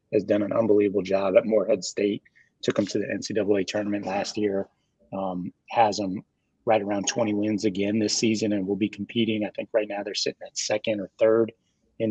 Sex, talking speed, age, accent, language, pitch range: male, 205 wpm, 30-49, American, English, 100-110 Hz